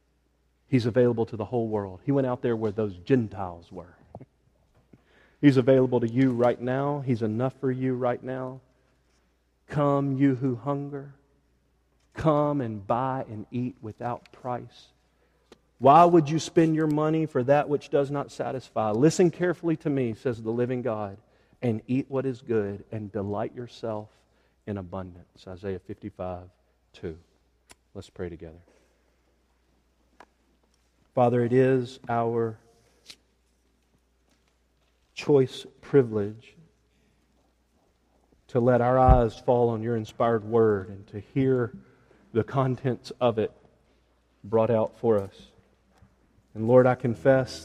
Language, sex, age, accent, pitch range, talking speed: English, male, 40-59, American, 90-130 Hz, 130 wpm